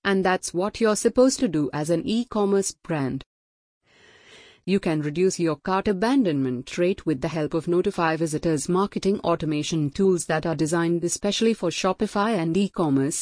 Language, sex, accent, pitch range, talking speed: English, female, Indian, 155-195 Hz, 160 wpm